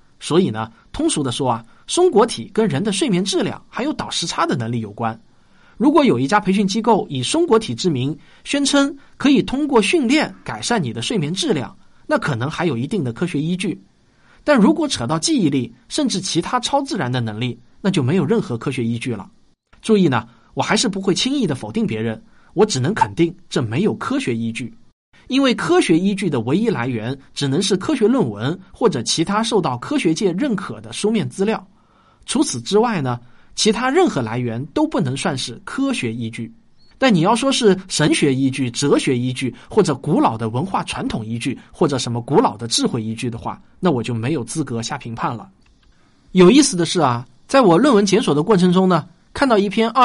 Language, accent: Chinese, native